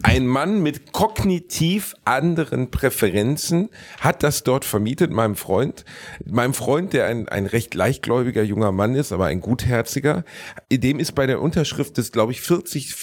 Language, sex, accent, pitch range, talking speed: German, male, German, 105-150 Hz, 155 wpm